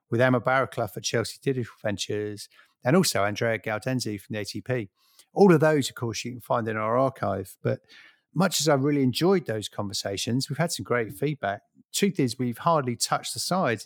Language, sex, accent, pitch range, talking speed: English, male, British, 110-135 Hz, 195 wpm